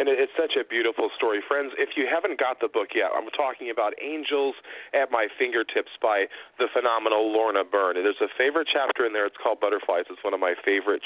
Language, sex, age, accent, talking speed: English, male, 40-59, American, 215 wpm